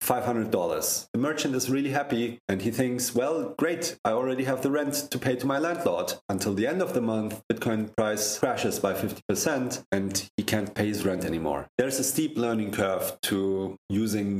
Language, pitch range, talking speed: English, 95-115 Hz, 190 wpm